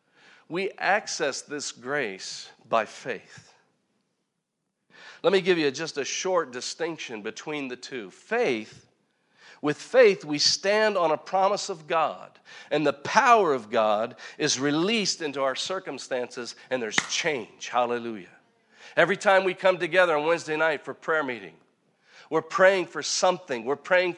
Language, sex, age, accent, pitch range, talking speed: English, male, 50-69, American, 145-190 Hz, 145 wpm